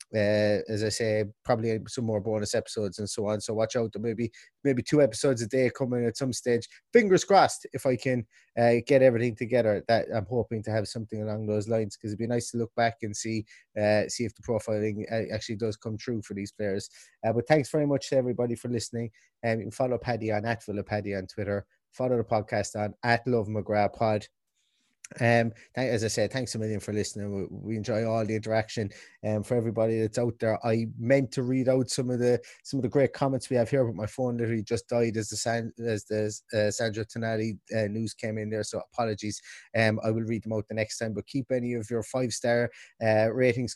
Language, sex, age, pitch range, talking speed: English, male, 20-39, 105-120 Hz, 235 wpm